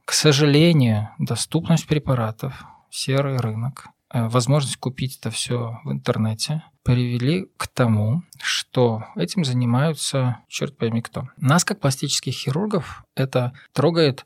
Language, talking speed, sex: Russian, 115 wpm, male